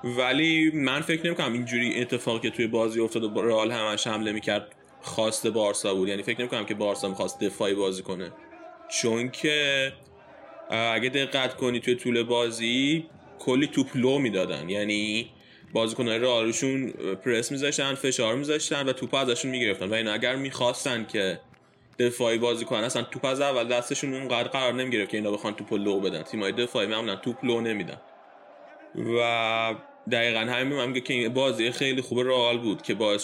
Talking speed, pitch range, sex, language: 175 wpm, 110-135 Hz, male, Arabic